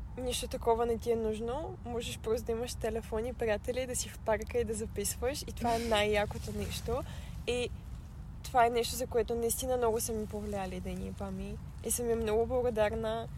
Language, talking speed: Bulgarian, 195 wpm